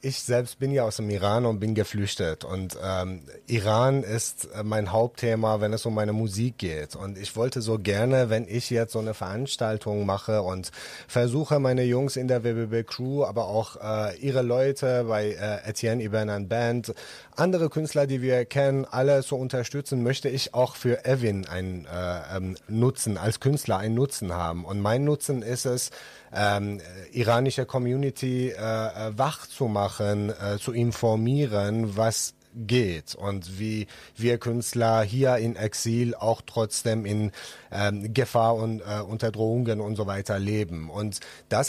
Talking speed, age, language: 160 wpm, 30-49, German